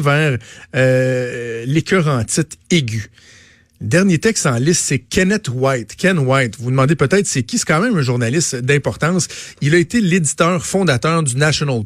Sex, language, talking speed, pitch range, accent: male, French, 160 wpm, 130-175 Hz, Canadian